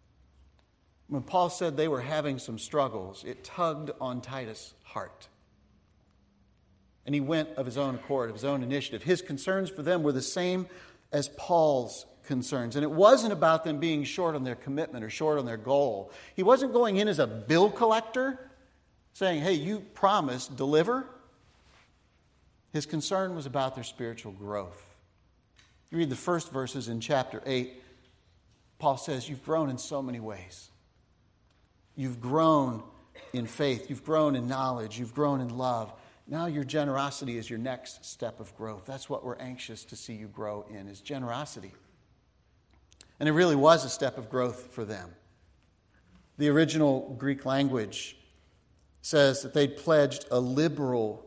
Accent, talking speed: American, 160 wpm